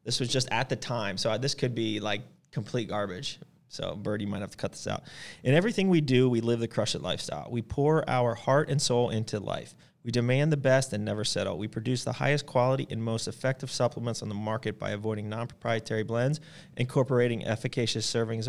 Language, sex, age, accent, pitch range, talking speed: English, male, 30-49, American, 105-125 Hz, 215 wpm